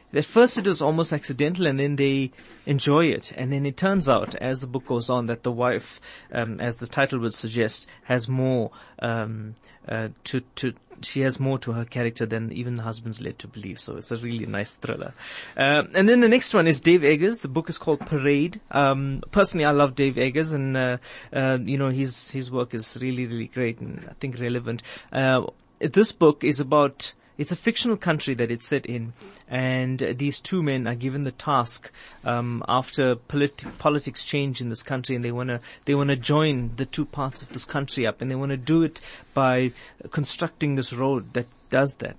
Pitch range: 125-145 Hz